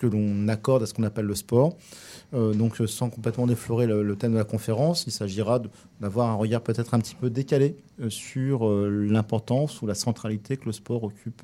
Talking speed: 220 wpm